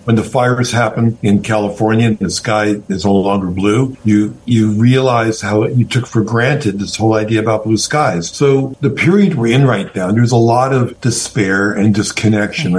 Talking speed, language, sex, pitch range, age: 190 wpm, English, male, 105-125 Hz, 50-69